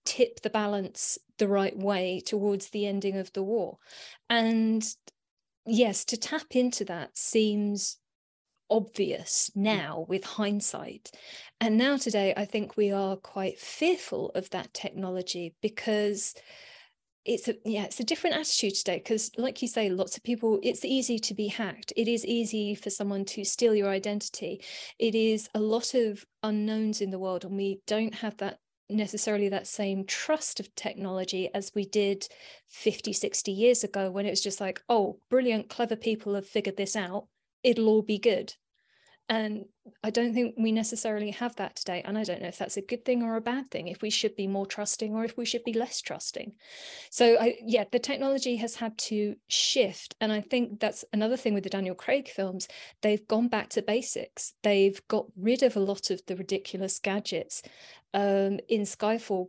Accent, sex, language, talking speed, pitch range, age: British, female, English, 185 wpm, 200-230 Hz, 20-39